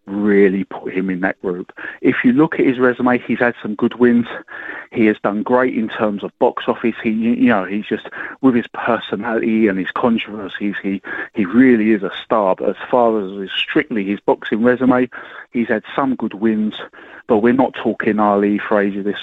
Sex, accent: male, British